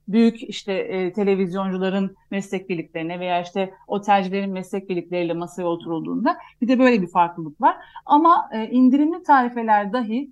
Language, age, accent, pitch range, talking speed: Turkish, 40-59, native, 210-265 Hz, 120 wpm